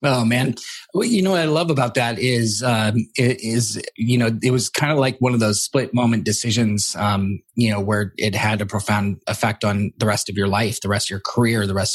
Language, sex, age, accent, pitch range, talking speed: English, male, 30-49, American, 110-135 Hz, 250 wpm